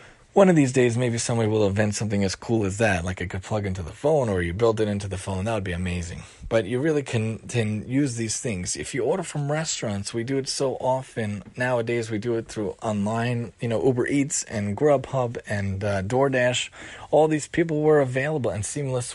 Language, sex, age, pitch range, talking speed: English, male, 30-49, 110-135 Hz, 225 wpm